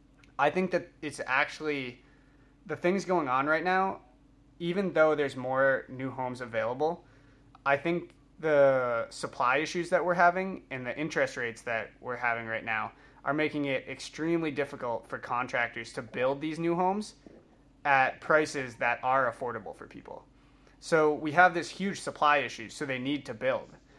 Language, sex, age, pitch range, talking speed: English, male, 20-39, 130-155 Hz, 165 wpm